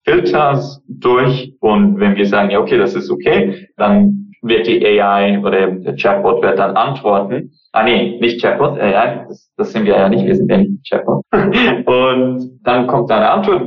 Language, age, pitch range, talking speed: German, 20-39, 105-165 Hz, 200 wpm